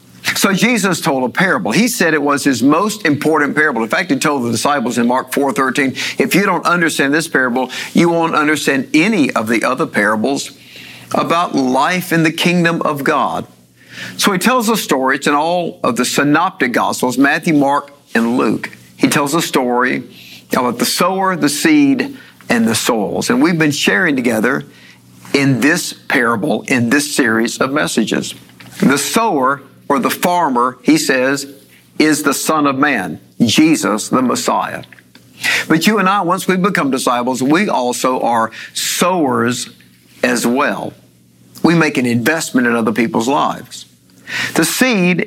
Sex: male